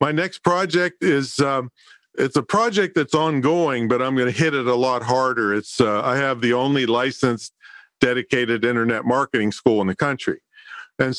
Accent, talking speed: American, 180 wpm